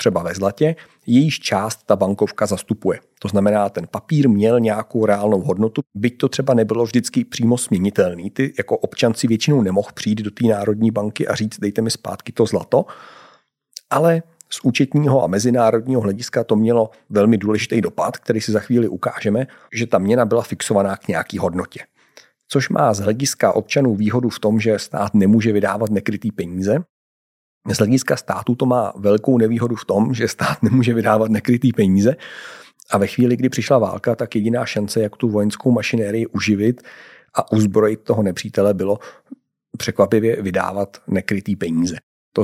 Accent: native